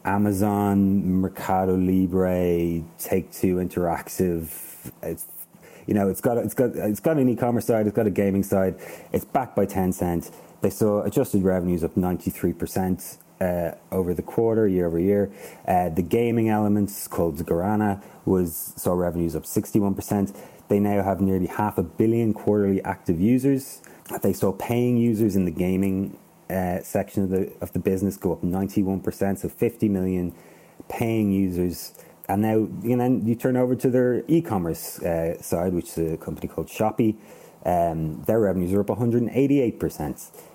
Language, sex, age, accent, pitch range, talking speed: English, male, 30-49, Irish, 85-105 Hz, 170 wpm